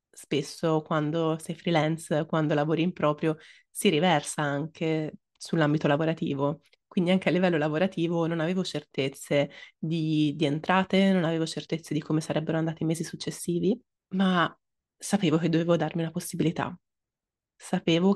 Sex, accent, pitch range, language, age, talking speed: female, native, 165-195 Hz, Italian, 20-39, 140 wpm